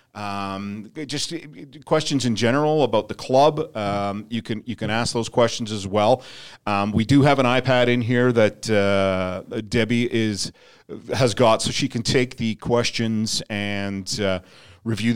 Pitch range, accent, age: 100-130 Hz, American, 40-59